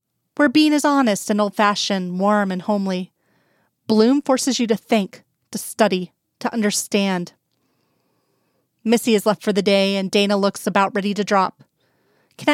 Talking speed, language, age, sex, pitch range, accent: 160 wpm, English, 30-49, female, 195-245 Hz, American